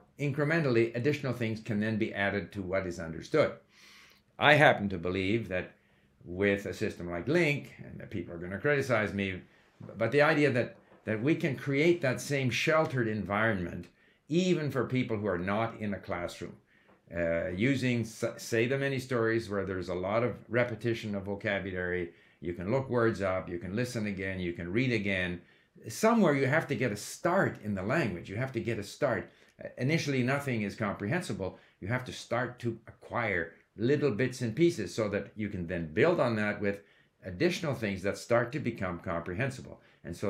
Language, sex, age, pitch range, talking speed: English, male, 60-79, 95-130 Hz, 190 wpm